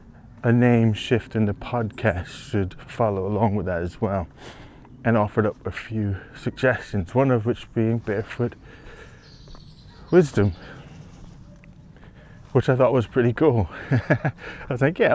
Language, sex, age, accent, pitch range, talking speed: English, male, 20-39, British, 95-120 Hz, 140 wpm